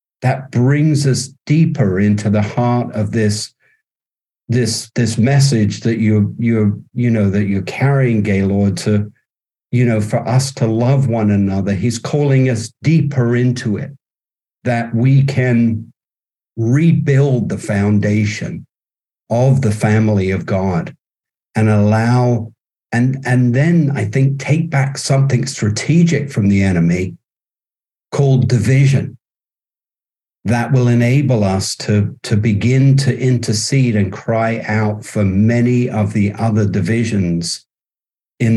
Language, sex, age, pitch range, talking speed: English, male, 50-69, 105-125 Hz, 130 wpm